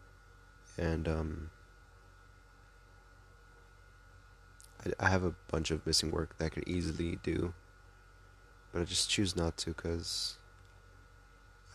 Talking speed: 110 wpm